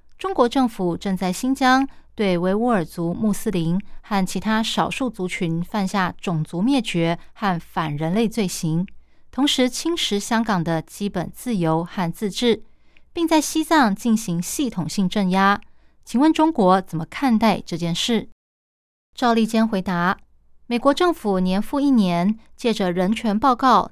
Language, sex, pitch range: Chinese, female, 185-240 Hz